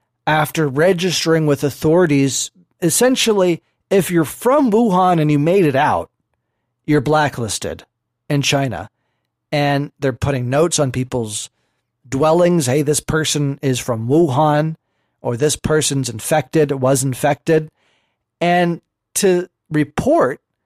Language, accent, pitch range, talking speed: English, American, 135-165 Hz, 115 wpm